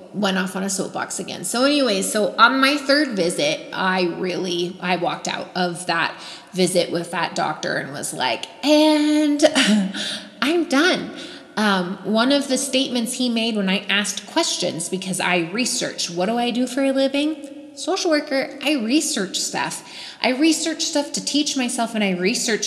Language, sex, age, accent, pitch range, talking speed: English, female, 20-39, American, 185-265 Hz, 170 wpm